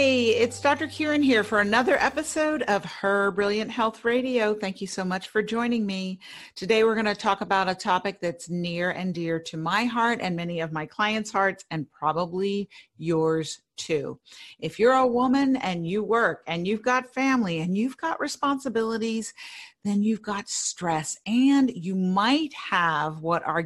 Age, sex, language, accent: 50-69, female, English, American